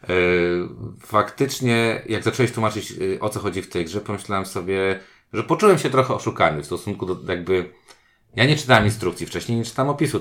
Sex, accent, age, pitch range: male, native, 40-59, 90-115 Hz